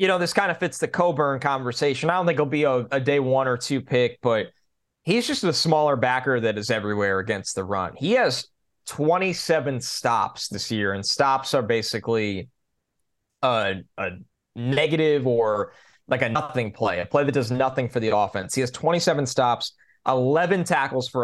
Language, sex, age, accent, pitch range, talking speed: English, male, 20-39, American, 110-140 Hz, 185 wpm